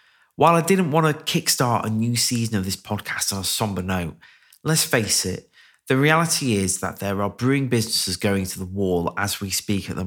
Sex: male